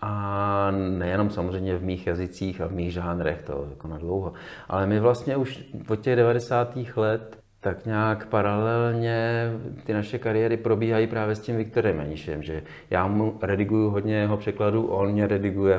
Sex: male